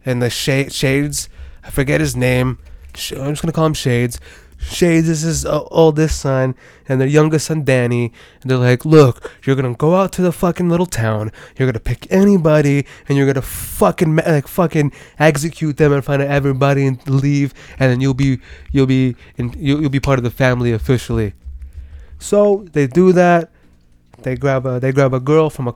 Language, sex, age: English, male, 20-39